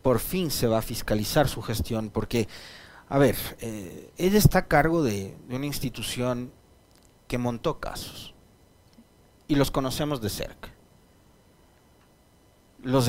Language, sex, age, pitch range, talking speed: Spanish, male, 40-59, 110-140 Hz, 135 wpm